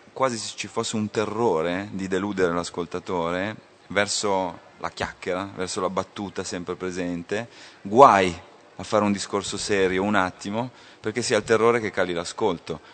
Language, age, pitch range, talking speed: Italian, 30-49, 90-105 Hz, 150 wpm